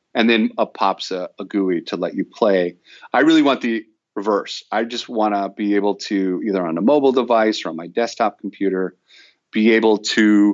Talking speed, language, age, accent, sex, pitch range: 205 wpm, English, 40-59, American, male, 95-115 Hz